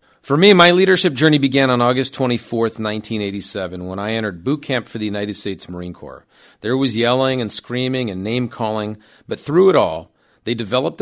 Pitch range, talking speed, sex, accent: 105-140 Hz, 185 wpm, male, American